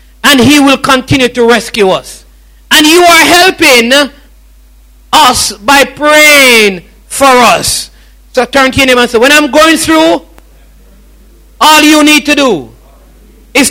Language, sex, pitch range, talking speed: English, male, 180-255 Hz, 145 wpm